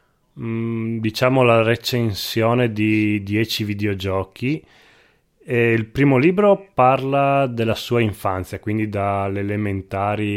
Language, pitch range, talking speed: Italian, 95-125 Hz, 100 wpm